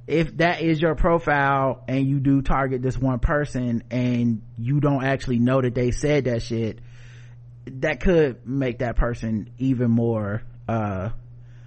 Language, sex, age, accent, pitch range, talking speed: English, male, 30-49, American, 120-145 Hz, 155 wpm